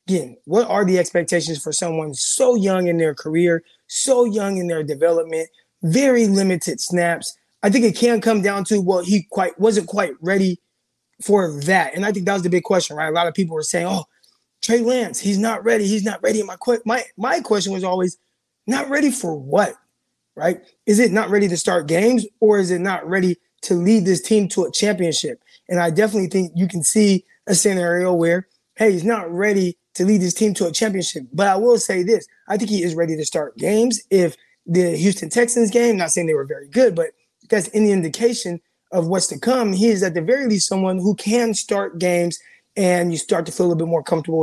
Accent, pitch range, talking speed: American, 175-215 Hz, 220 wpm